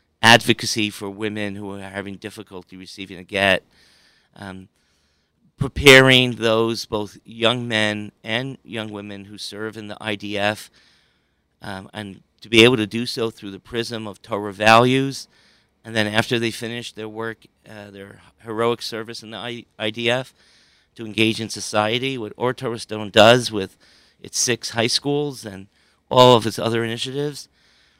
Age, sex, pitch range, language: 40-59, male, 100-120 Hz, English